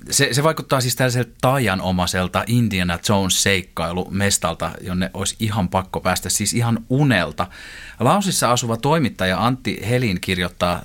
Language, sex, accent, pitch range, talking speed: Finnish, male, native, 90-115 Hz, 125 wpm